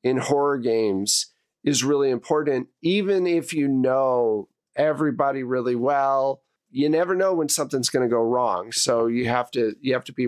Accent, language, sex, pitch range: American, English, male, 130-175 Hz